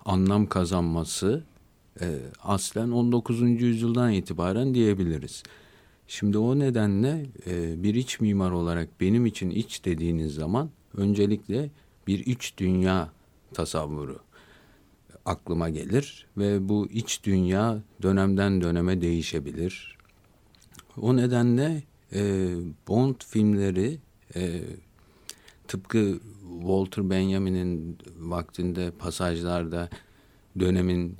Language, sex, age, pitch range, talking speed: Turkish, male, 50-69, 85-115 Hz, 85 wpm